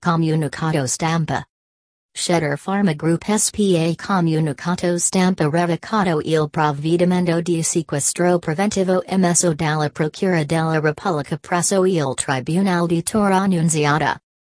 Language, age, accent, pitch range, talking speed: Italian, 40-59, American, 150-180 Hz, 105 wpm